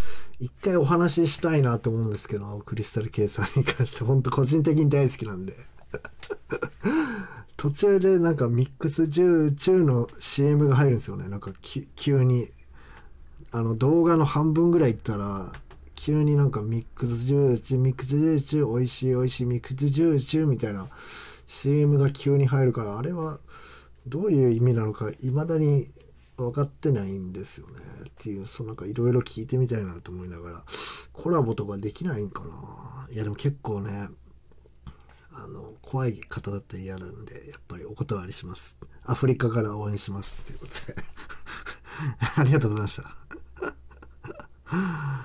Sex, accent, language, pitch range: male, native, Japanese, 100-140 Hz